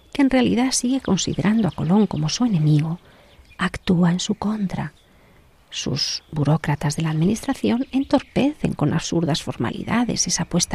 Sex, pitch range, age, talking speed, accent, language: female, 150-195 Hz, 40-59, 140 wpm, Spanish, Spanish